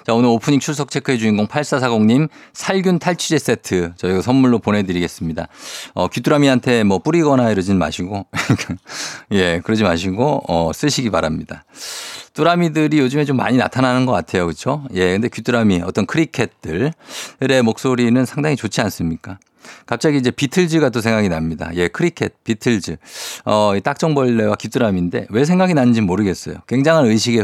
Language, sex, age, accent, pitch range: Korean, male, 50-69, native, 105-145 Hz